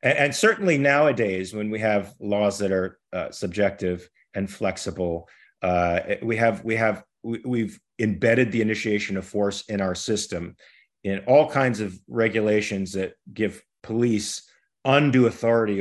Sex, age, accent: male, 40-59, American